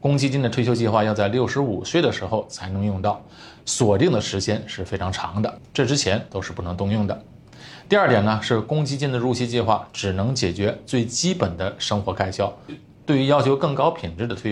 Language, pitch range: Chinese, 100-135 Hz